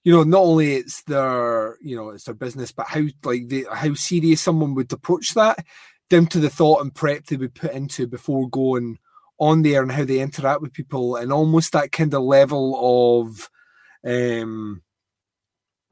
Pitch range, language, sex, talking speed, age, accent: 125-160 Hz, English, male, 185 wpm, 30-49, British